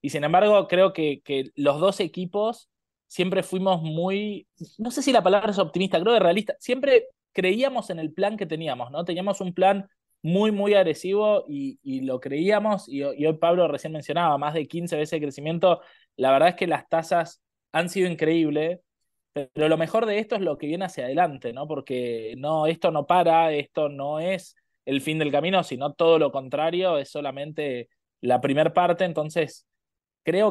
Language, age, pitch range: Portuguese, 20-39, 145-185 Hz